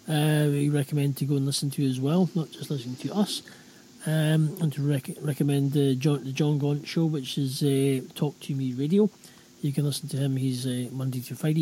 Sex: male